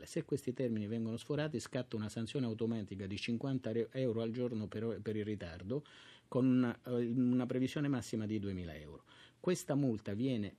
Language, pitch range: Italian, 100-125 Hz